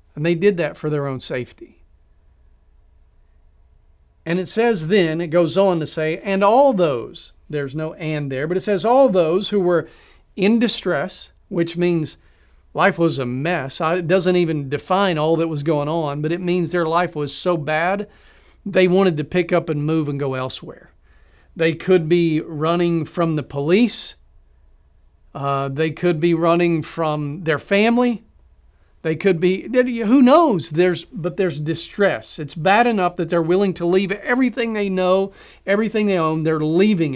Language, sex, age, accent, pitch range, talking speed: English, male, 40-59, American, 150-195 Hz, 170 wpm